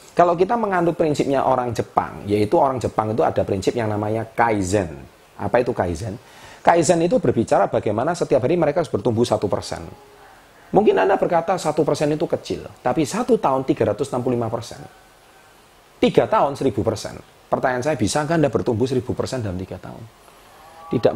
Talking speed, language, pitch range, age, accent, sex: 145 wpm, Indonesian, 110-170 Hz, 30-49, native, male